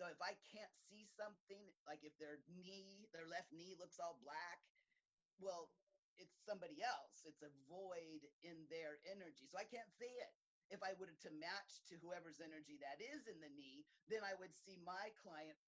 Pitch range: 155-215 Hz